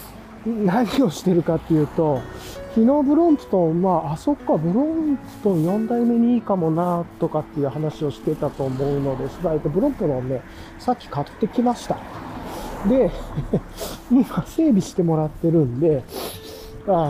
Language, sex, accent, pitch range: Japanese, male, native, 130-200 Hz